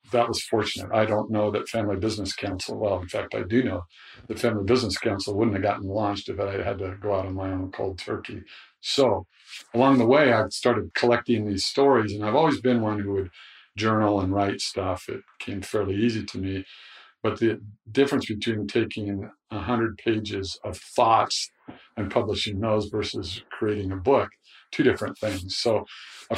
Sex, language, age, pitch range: male, English, 50-69, 100-110 Hz